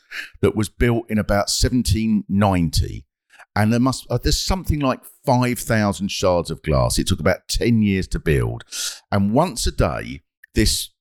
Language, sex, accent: English, male, British